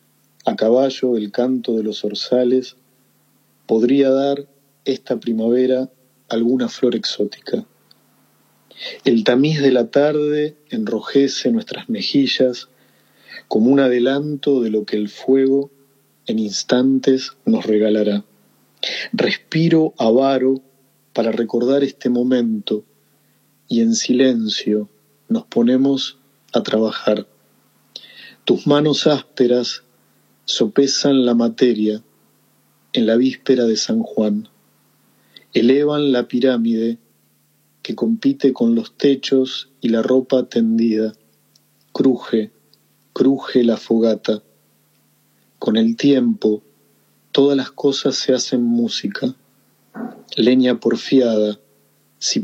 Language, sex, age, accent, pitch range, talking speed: Spanish, male, 40-59, Argentinian, 115-140 Hz, 100 wpm